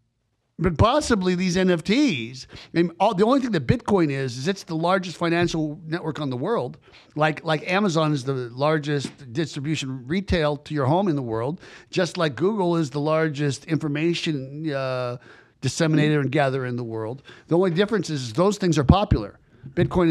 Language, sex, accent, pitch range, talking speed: English, male, American, 140-180 Hz, 180 wpm